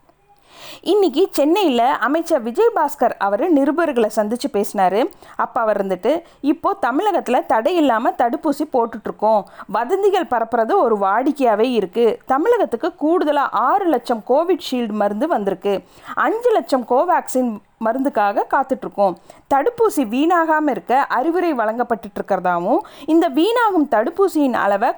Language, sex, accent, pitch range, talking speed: Tamil, female, native, 220-320 Hz, 105 wpm